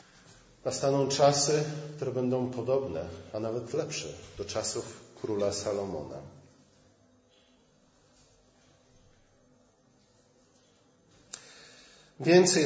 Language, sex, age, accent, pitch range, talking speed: Polish, male, 40-59, native, 110-140 Hz, 60 wpm